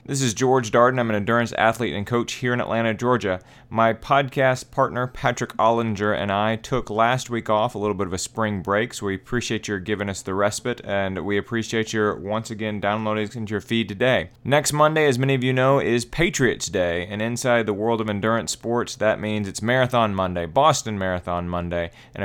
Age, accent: 30-49, American